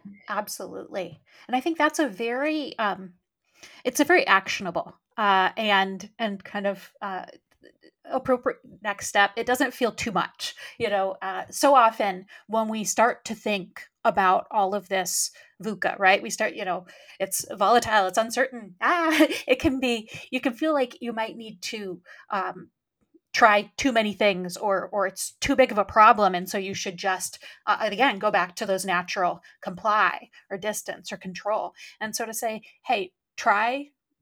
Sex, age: female, 30-49